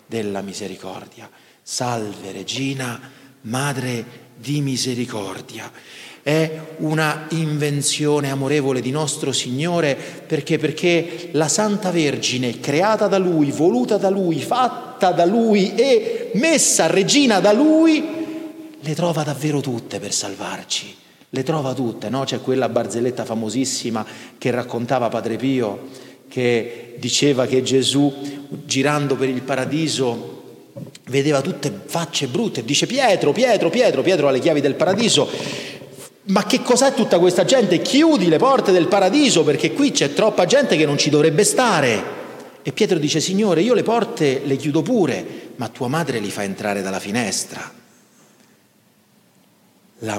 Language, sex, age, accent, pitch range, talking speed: Italian, male, 40-59, native, 120-175 Hz, 135 wpm